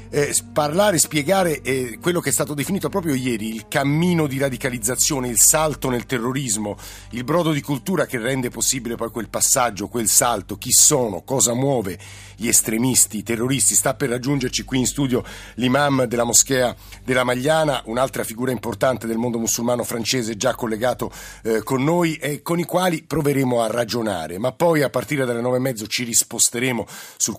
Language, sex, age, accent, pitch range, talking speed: Italian, male, 50-69, native, 115-140 Hz, 175 wpm